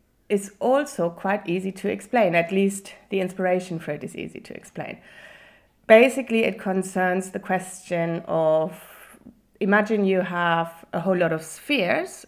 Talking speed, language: 145 wpm, English